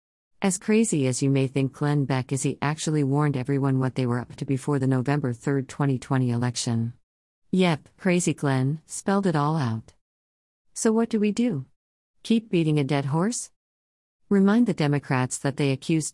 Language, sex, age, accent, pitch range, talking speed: English, female, 50-69, American, 130-160 Hz, 175 wpm